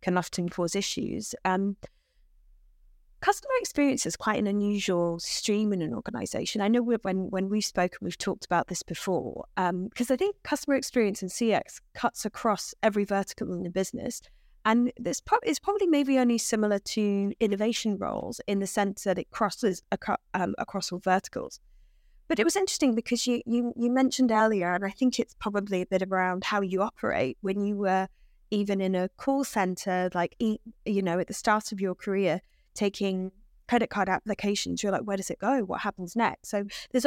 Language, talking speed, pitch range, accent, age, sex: English, 185 wpm, 185-235 Hz, British, 20-39, female